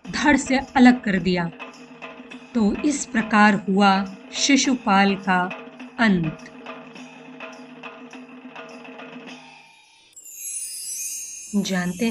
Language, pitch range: Hindi, 200-255 Hz